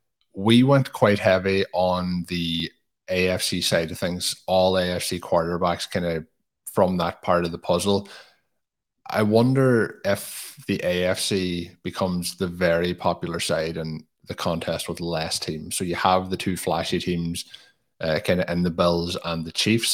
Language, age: English, 20-39